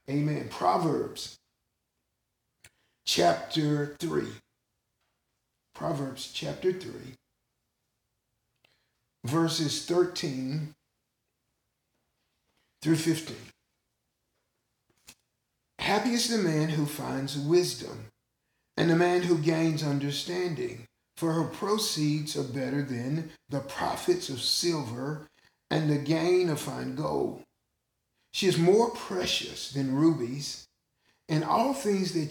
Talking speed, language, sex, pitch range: 95 wpm, English, male, 130-160 Hz